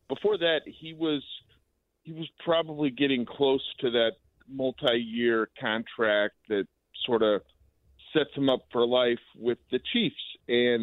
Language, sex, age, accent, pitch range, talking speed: English, male, 40-59, American, 120-150 Hz, 140 wpm